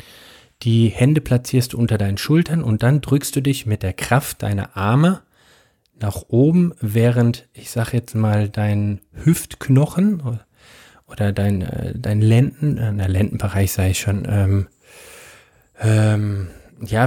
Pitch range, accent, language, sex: 110-140 Hz, German, German, male